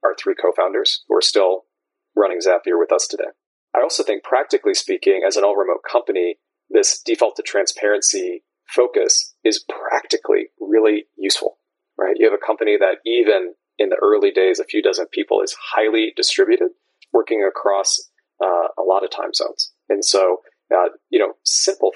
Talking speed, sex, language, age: 165 wpm, male, English, 30-49